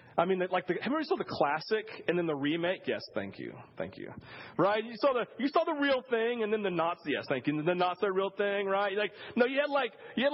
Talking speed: 275 wpm